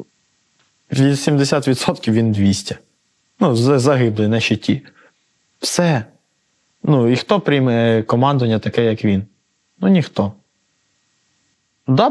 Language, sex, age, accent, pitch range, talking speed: Russian, male, 20-39, native, 115-170 Hz, 95 wpm